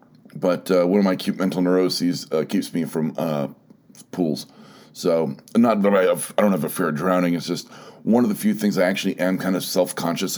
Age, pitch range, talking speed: 40-59, 90-105 Hz, 225 wpm